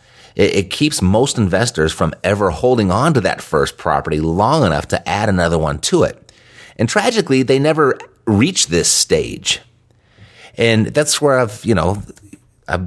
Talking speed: 160 wpm